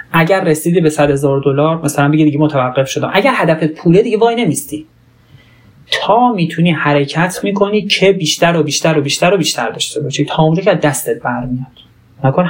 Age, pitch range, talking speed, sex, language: 30-49, 130-175 Hz, 180 wpm, male, Persian